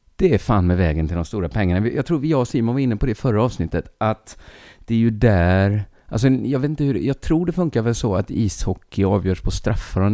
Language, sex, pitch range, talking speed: Swedish, male, 85-115 Hz, 250 wpm